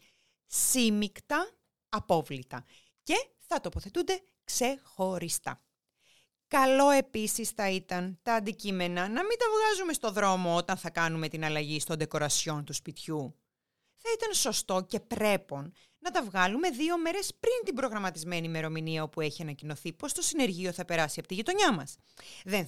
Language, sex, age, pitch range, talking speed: Greek, female, 30-49, 170-245 Hz, 145 wpm